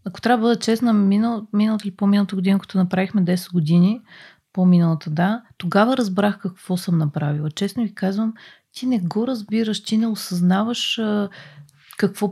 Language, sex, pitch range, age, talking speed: Bulgarian, female, 185-225 Hz, 30-49, 165 wpm